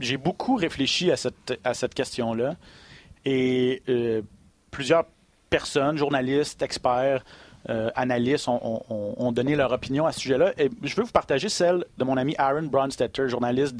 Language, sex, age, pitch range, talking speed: French, male, 30-49, 125-155 Hz, 150 wpm